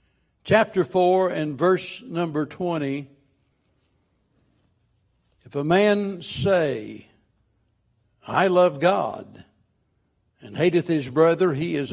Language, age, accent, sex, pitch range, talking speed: English, 60-79, American, male, 160-205 Hz, 95 wpm